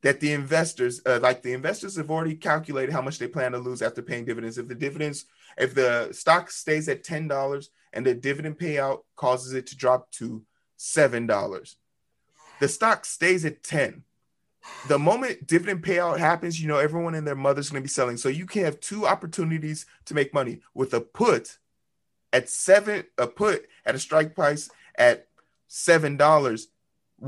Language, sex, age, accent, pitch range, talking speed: English, male, 30-49, American, 130-165 Hz, 175 wpm